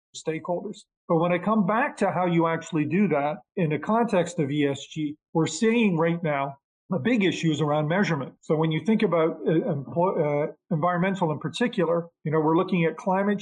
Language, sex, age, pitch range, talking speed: English, male, 40-59, 150-180 Hz, 195 wpm